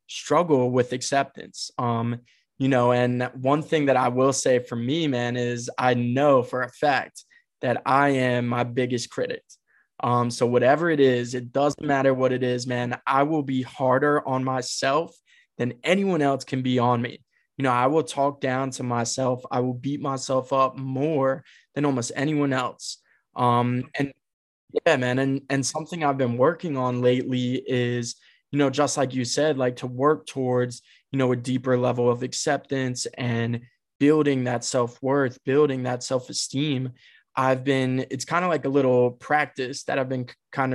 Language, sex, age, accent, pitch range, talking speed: English, male, 20-39, American, 125-135 Hz, 180 wpm